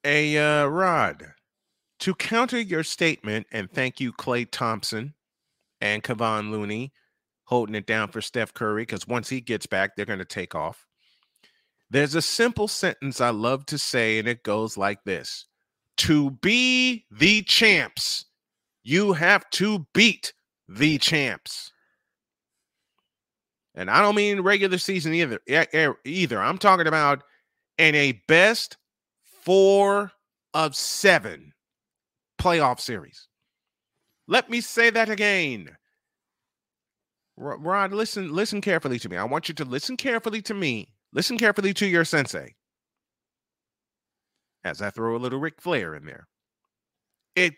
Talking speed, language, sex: 135 wpm, English, male